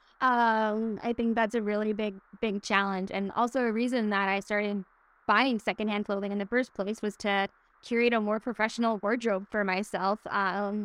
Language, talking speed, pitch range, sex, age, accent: English, 185 wpm, 185-215 Hz, female, 10-29, American